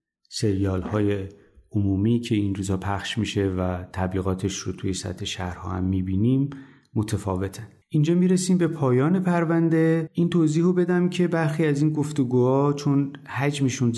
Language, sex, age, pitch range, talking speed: Persian, male, 30-49, 110-160 Hz, 135 wpm